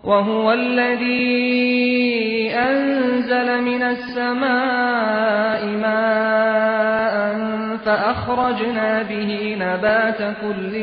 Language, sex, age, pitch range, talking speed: Persian, male, 30-49, 210-245 Hz, 55 wpm